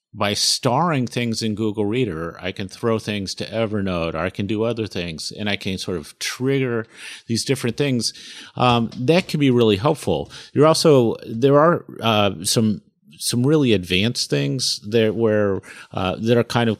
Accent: American